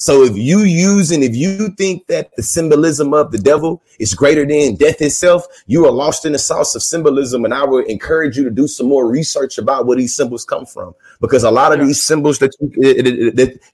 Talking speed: 225 wpm